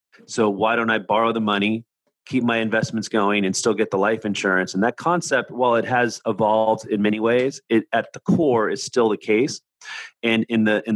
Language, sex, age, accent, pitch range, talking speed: English, male, 30-49, American, 105-125 Hz, 215 wpm